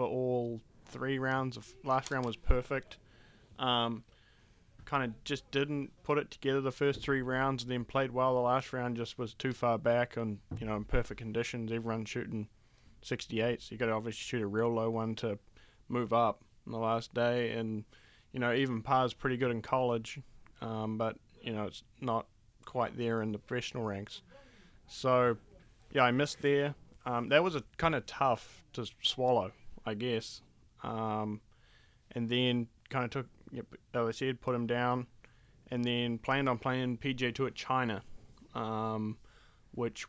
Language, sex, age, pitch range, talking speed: English, male, 20-39, 110-130 Hz, 175 wpm